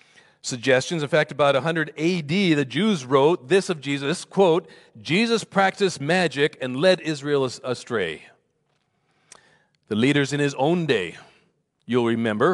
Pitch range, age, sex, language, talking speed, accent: 145-190 Hz, 40-59, male, English, 135 wpm, American